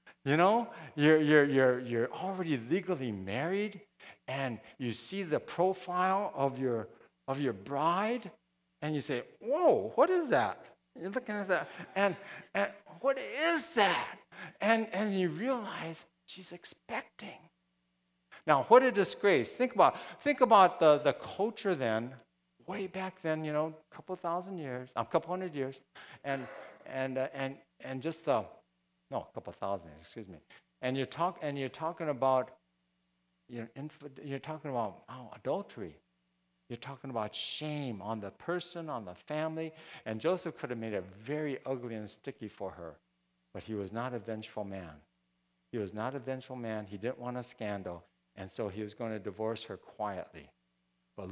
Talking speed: 170 wpm